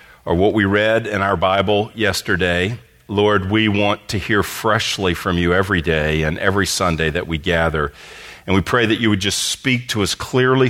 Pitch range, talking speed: 85-115 Hz, 195 wpm